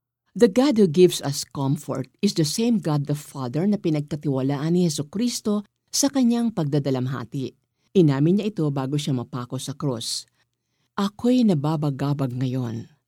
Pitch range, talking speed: 135-185 Hz, 140 wpm